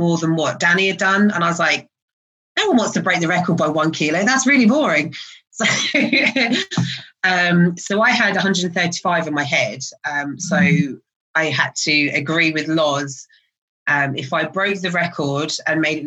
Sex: female